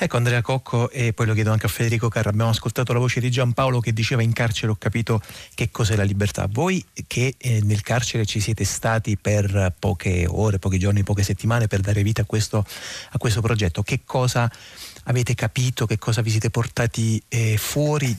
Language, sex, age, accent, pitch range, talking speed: Italian, male, 30-49, native, 105-120 Hz, 200 wpm